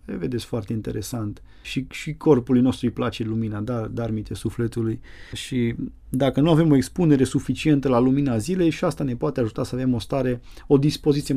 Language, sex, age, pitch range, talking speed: Romanian, male, 30-49, 115-150 Hz, 175 wpm